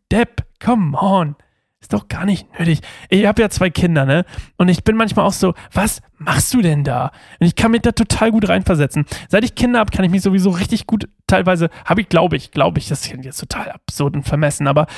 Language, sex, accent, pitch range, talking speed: German, male, German, 150-215 Hz, 230 wpm